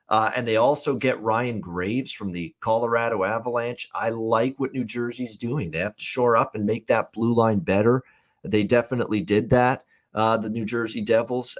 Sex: male